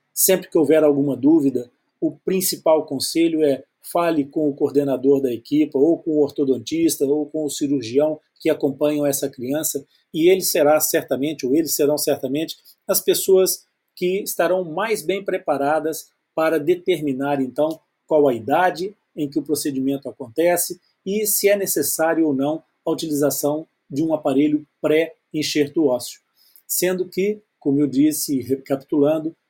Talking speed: 145 wpm